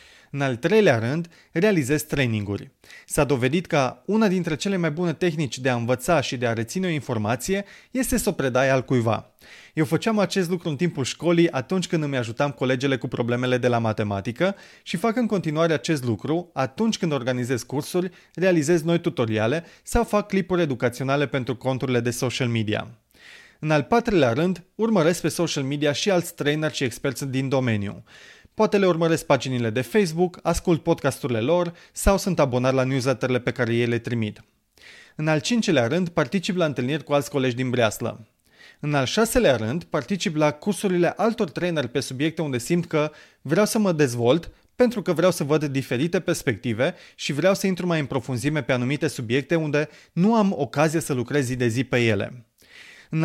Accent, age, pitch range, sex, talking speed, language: native, 30-49, 130-180 Hz, male, 180 wpm, Romanian